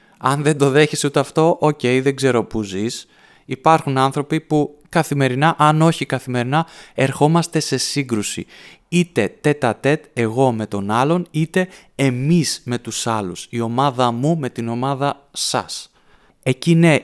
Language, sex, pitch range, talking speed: Greek, male, 115-145 Hz, 150 wpm